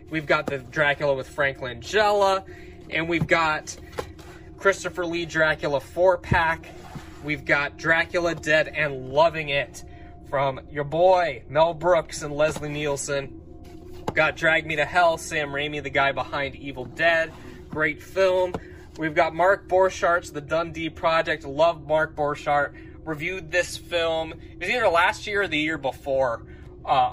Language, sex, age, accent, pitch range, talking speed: English, male, 20-39, American, 140-170 Hz, 150 wpm